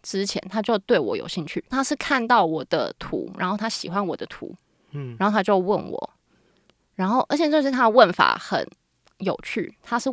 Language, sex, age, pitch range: Chinese, female, 20-39, 180-255 Hz